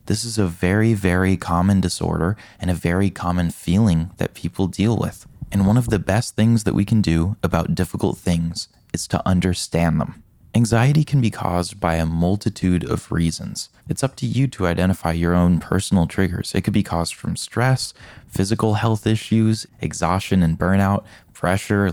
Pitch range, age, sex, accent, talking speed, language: 85-110 Hz, 20-39, male, American, 180 wpm, English